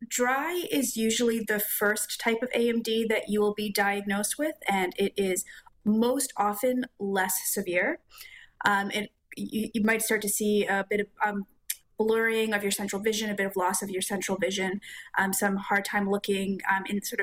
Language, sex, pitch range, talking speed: English, female, 200-225 Hz, 185 wpm